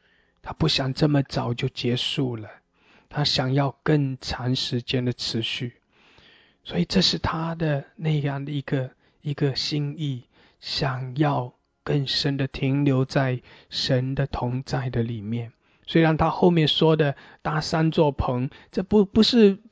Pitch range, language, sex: 140-175 Hz, English, male